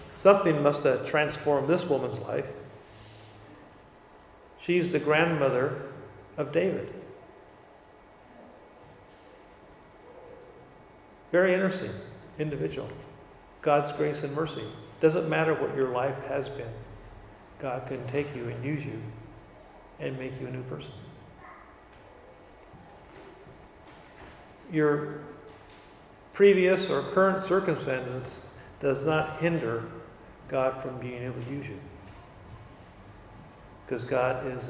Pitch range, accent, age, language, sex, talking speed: 120-150 Hz, American, 40-59, English, male, 100 wpm